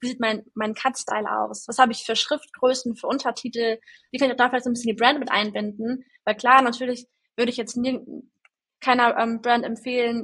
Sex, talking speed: female, 195 wpm